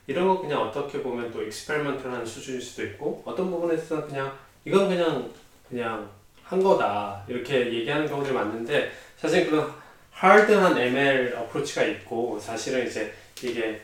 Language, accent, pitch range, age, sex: Korean, native, 115-160 Hz, 20-39, male